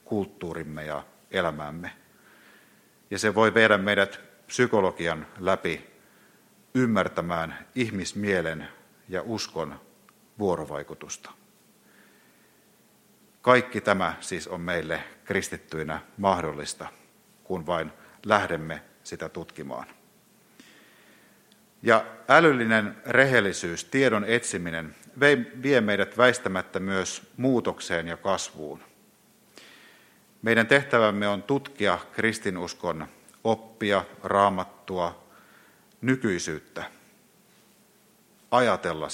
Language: Finnish